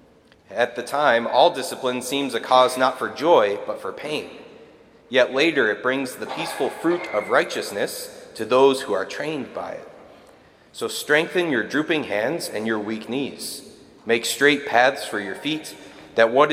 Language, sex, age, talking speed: English, male, 30-49, 170 wpm